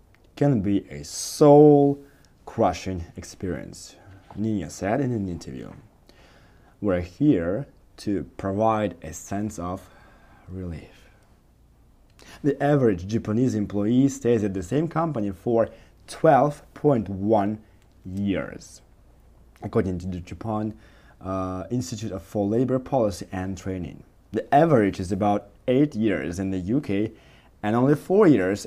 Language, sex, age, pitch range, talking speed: English, male, 20-39, 95-120 Hz, 115 wpm